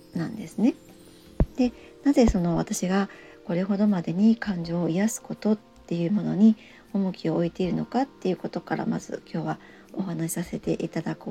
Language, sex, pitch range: Japanese, male, 175-230 Hz